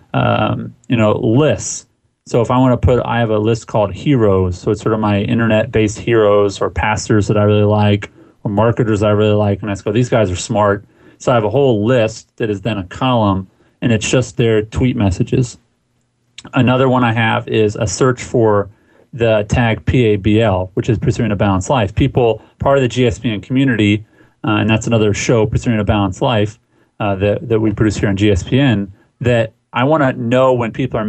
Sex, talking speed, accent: male, 205 wpm, American